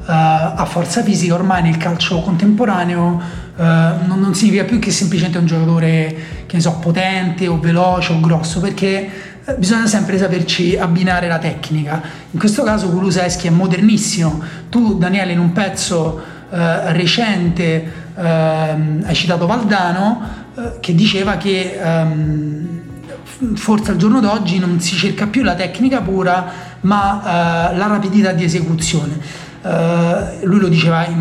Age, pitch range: 30-49, 165-200 Hz